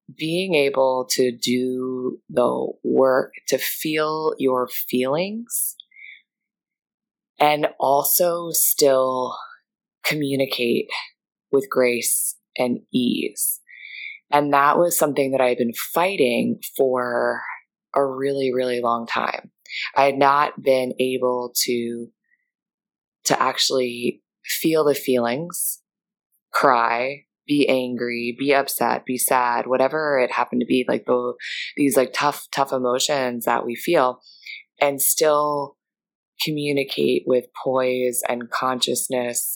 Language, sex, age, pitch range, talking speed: English, female, 20-39, 125-145 Hz, 110 wpm